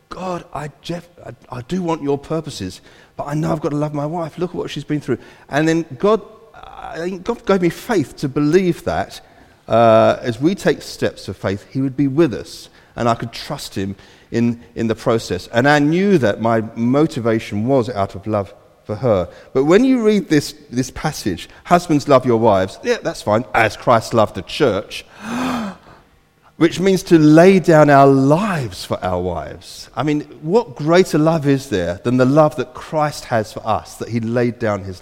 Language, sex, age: English, male, 40-59